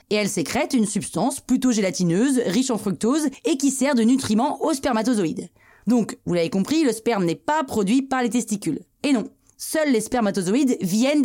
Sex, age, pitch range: female, 30-49, 195-260 Hz